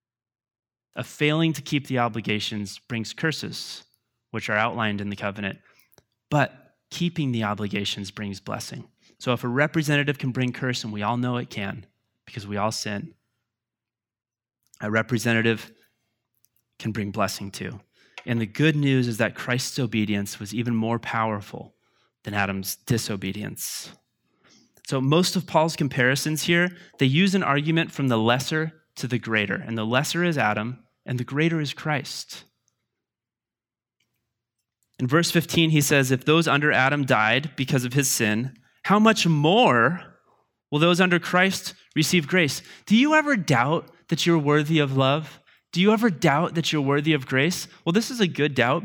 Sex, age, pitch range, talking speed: male, 30-49, 115-165 Hz, 160 wpm